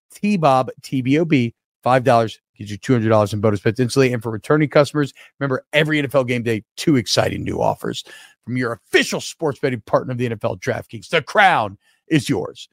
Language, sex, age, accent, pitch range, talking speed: English, male, 40-59, American, 130-180 Hz, 185 wpm